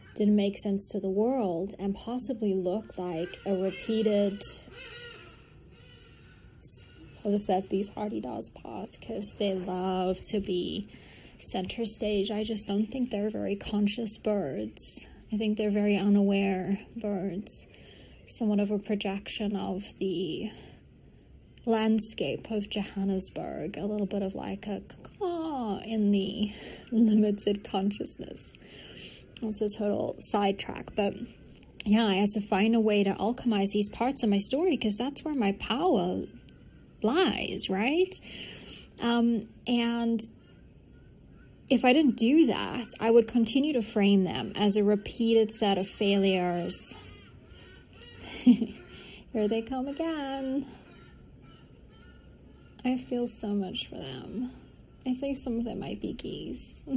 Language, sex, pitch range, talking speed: English, female, 200-230 Hz, 130 wpm